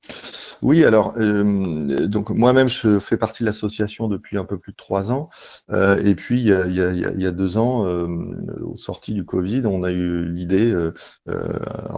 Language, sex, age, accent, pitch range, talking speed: French, male, 30-49, French, 95-110 Hz, 195 wpm